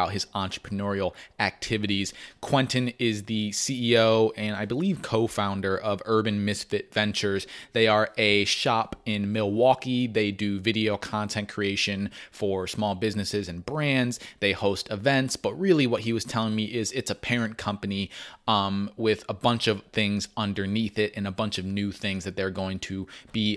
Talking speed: 165 wpm